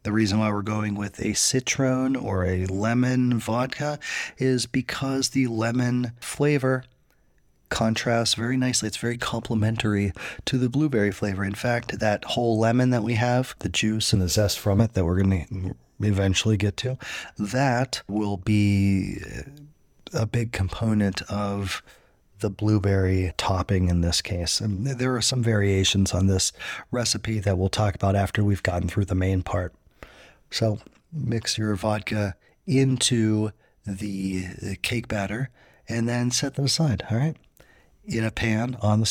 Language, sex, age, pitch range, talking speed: English, male, 30-49, 100-125 Hz, 155 wpm